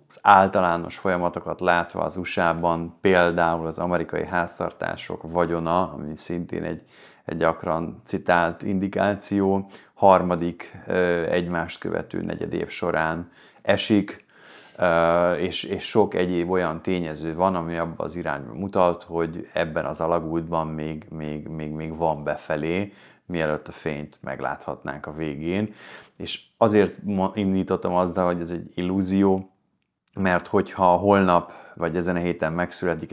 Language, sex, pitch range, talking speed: English, male, 85-95 Hz, 125 wpm